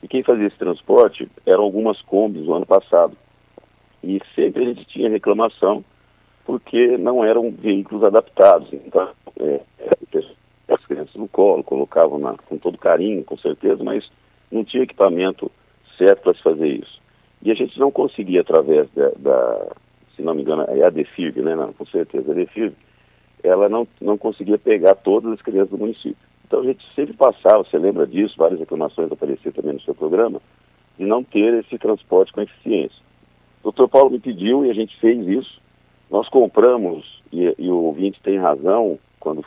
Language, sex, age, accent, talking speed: Portuguese, male, 50-69, Brazilian, 180 wpm